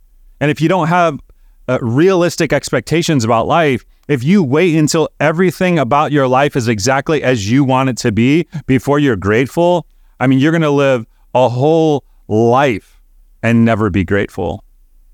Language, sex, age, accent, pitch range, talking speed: English, male, 30-49, American, 110-155 Hz, 165 wpm